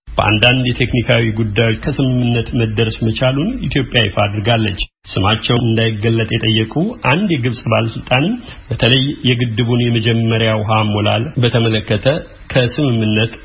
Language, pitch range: Amharic, 110-135 Hz